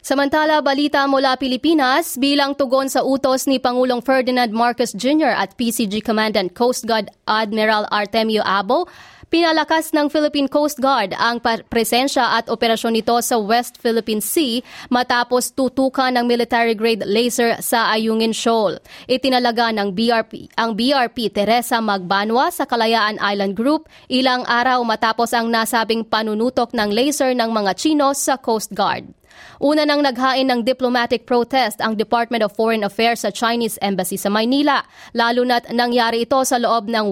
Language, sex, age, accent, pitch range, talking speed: English, female, 20-39, Filipino, 220-265 Hz, 145 wpm